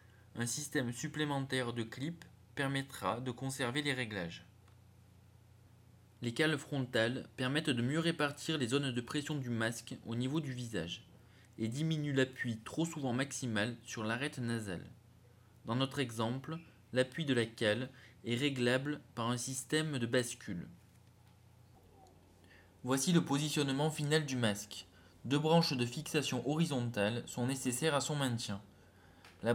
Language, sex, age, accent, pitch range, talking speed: French, male, 20-39, French, 110-140 Hz, 135 wpm